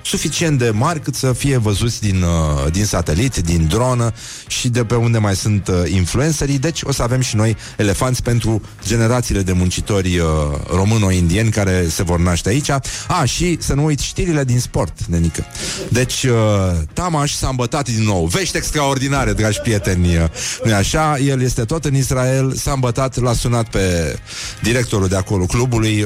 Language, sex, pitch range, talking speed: Romanian, male, 95-130 Hz, 165 wpm